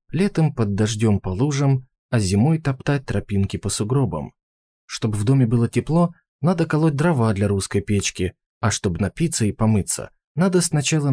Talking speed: 155 wpm